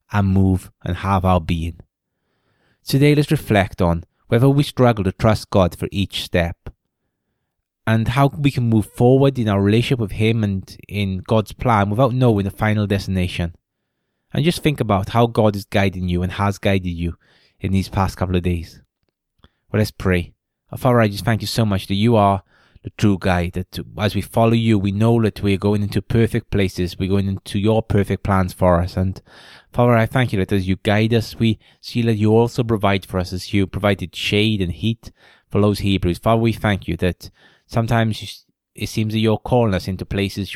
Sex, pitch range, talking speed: male, 95-110 Hz, 200 wpm